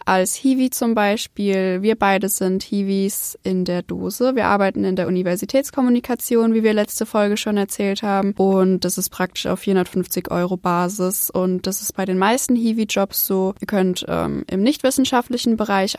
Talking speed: 170 wpm